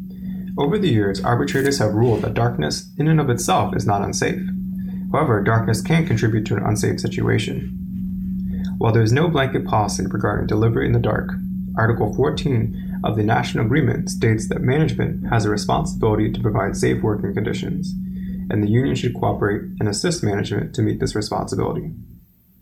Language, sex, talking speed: English, male, 165 wpm